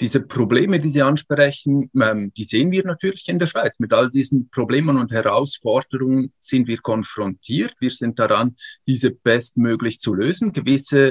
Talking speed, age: 155 wpm, 50-69